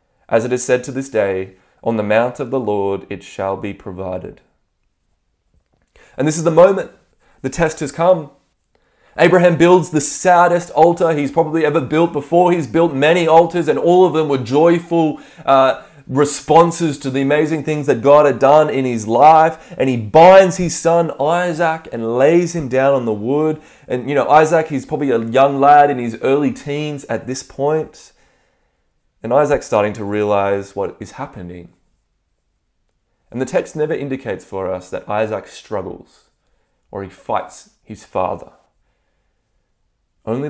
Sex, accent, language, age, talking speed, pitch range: male, Australian, English, 20-39, 165 wpm, 115-155 Hz